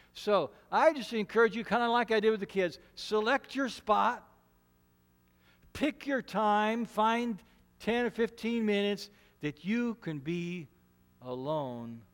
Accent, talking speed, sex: American, 145 wpm, male